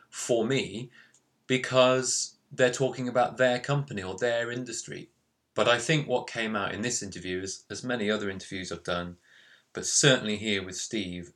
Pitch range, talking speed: 95-125 Hz, 165 wpm